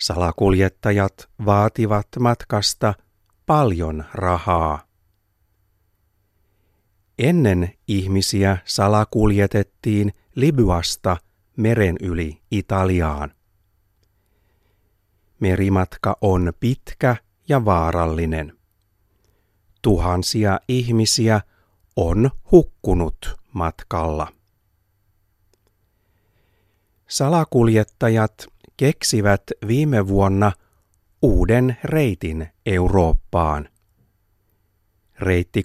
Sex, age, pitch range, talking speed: male, 60-79, 95-110 Hz, 50 wpm